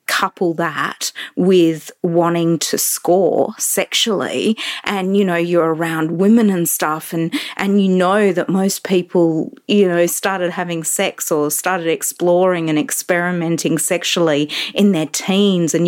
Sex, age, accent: female, 30-49, Australian